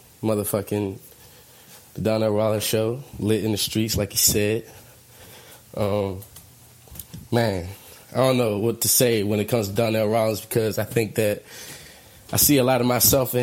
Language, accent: English, American